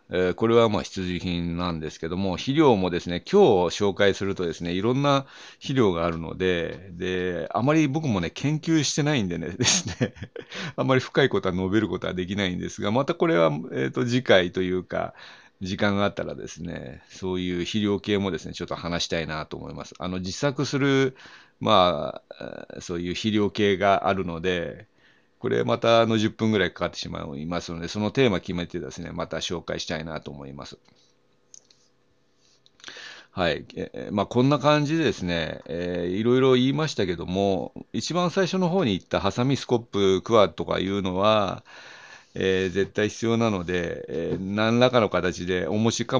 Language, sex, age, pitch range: Japanese, male, 40-59, 90-120 Hz